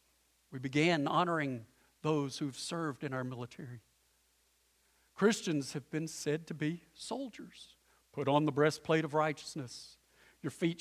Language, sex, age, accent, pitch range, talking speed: English, male, 50-69, American, 130-200 Hz, 135 wpm